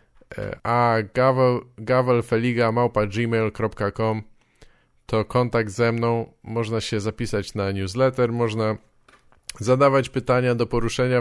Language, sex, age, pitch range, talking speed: English, male, 20-39, 110-130 Hz, 85 wpm